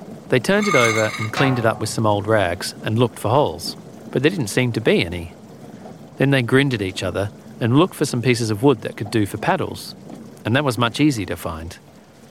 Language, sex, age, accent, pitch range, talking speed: English, male, 40-59, Australian, 105-150 Hz, 235 wpm